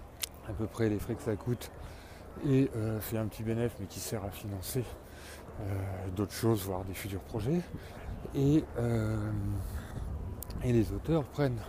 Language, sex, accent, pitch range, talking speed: French, male, French, 100-125 Hz, 165 wpm